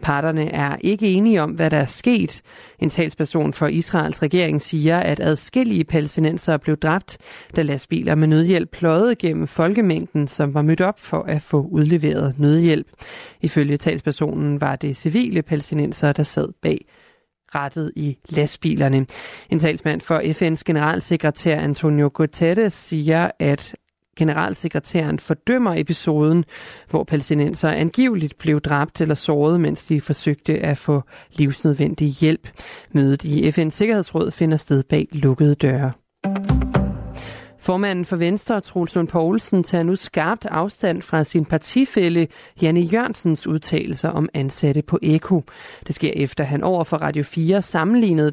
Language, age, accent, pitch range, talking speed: Danish, 30-49, native, 150-180 Hz, 140 wpm